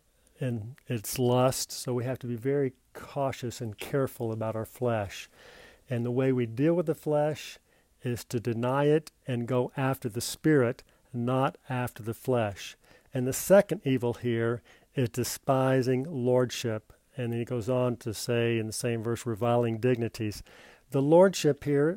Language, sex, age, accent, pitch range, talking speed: English, male, 50-69, American, 120-150 Hz, 165 wpm